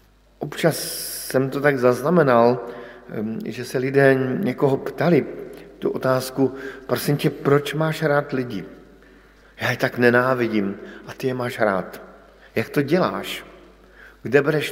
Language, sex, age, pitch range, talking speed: Slovak, male, 50-69, 115-140 Hz, 130 wpm